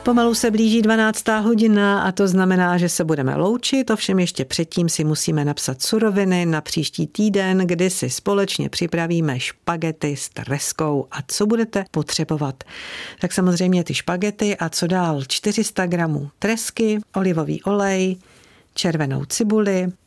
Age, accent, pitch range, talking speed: 50-69, native, 150-195 Hz, 140 wpm